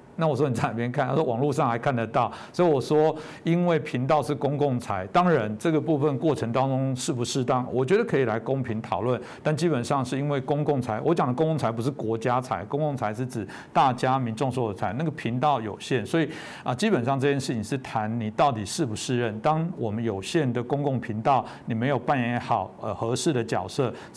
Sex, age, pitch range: male, 60-79, 120-155 Hz